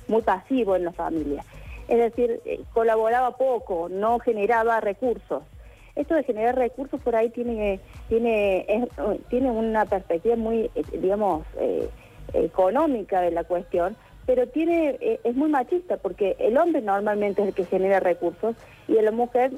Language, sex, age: Spanish, female, 40-59